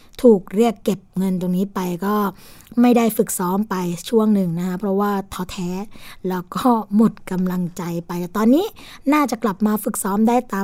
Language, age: Thai, 20-39